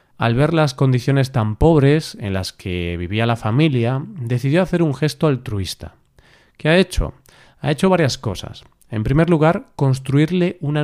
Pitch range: 115-145 Hz